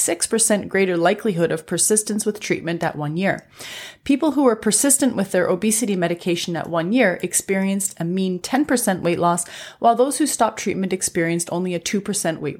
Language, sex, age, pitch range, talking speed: English, female, 30-49, 175-225 Hz, 170 wpm